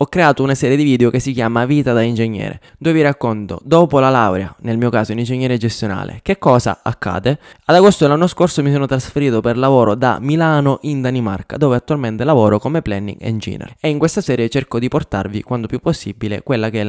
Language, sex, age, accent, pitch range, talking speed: Italian, male, 20-39, native, 115-145 Hz, 210 wpm